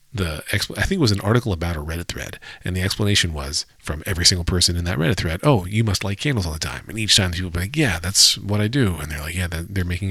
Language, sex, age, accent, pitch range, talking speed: English, male, 40-59, American, 90-110 Hz, 290 wpm